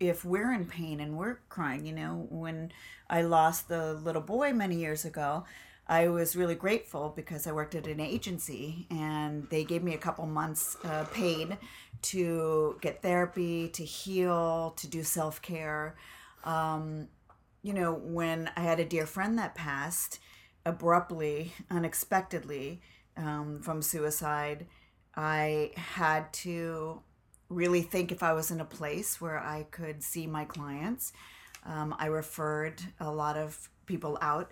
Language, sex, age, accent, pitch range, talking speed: English, female, 40-59, American, 155-175 Hz, 150 wpm